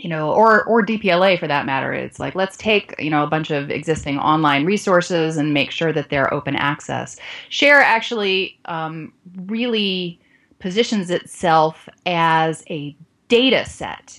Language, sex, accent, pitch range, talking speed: English, female, American, 145-210 Hz, 155 wpm